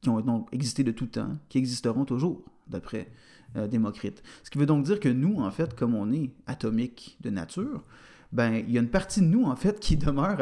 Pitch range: 115-145 Hz